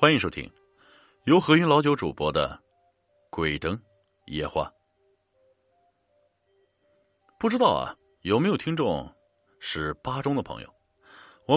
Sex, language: male, Chinese